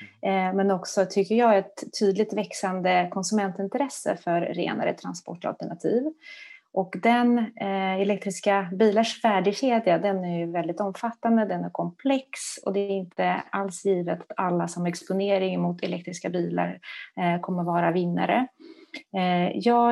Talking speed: 130 wpm